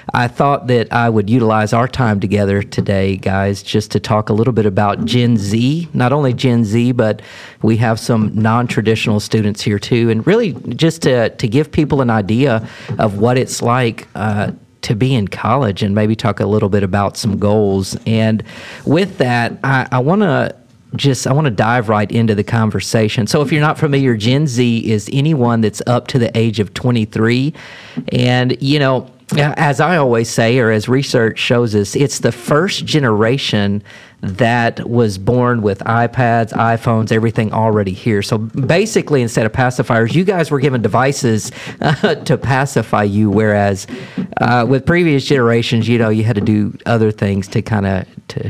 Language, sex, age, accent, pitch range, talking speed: English, male, 40-59, American, 110-130 Hz, 185 wpm